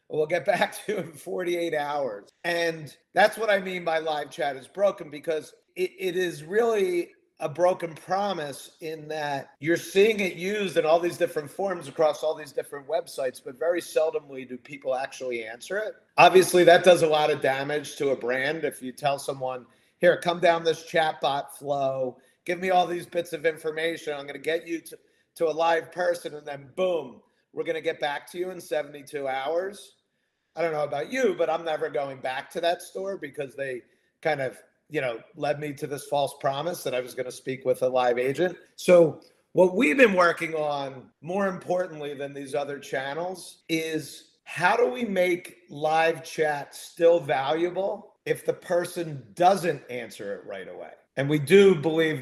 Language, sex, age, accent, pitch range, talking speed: English, male, 40-59, American, 145-180 Hz, 190 wpm